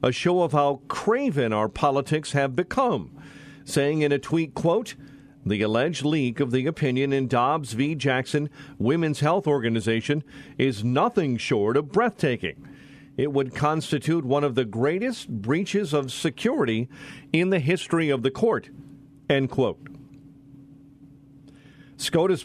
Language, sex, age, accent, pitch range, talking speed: English, male, 50-69, American, 125-150 Hz, 135 wpm